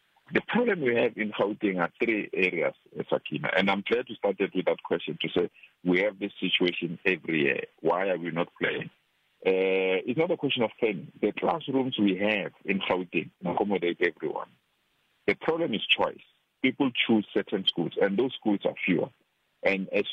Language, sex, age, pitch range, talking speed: English, male, 50-69, 100-155 Hz, 180 wpm